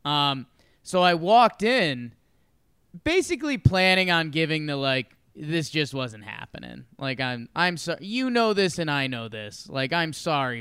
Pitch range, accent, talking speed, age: 130-195 Hz, American, 165 wpm, 20-39